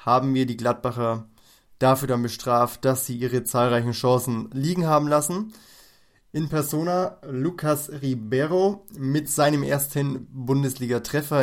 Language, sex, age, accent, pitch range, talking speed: German, male, 20-39, German, 125-140 Hz, 120 wpm